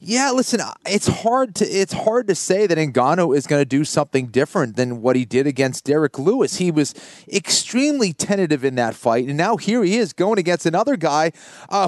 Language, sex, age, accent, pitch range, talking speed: English, male, 30-49, American, 120-170 Hz, 205 wpm